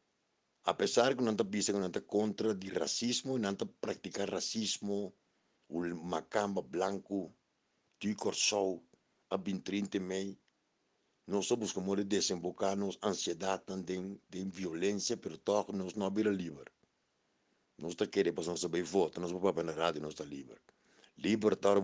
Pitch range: 85-100 Hz